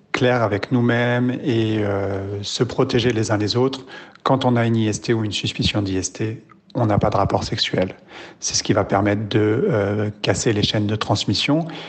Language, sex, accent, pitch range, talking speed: French, male, French, 105-125 Hz, 190 wpm